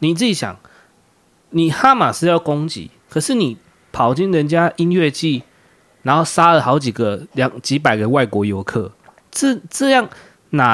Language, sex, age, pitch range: Chinese, male, 20-39, 135-185 Hz